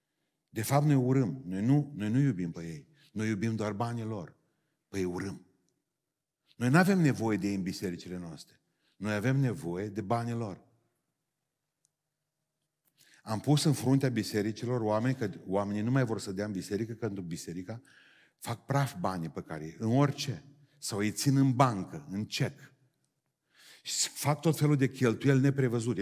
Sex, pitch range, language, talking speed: male, 110-150 Hz, Romanian, 165 wpm